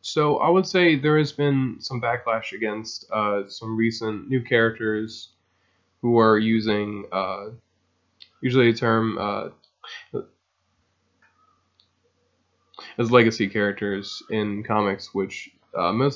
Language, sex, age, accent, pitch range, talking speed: English, male, 20-39, American, 100-115 Hz, 115 wpm